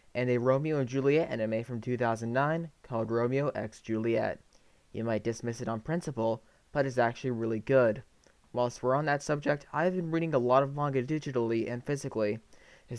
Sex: male